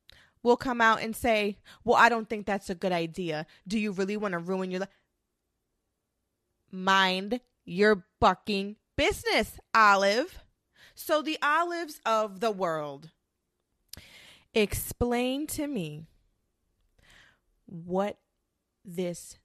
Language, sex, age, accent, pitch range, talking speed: English, female, 20-39, American, 190-265 Hz, 115 wpm